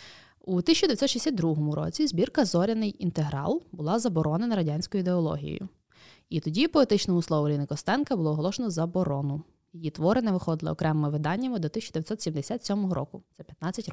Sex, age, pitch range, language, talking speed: female, 20-39, 160-225 Hz, Ukrainian, 130 wpm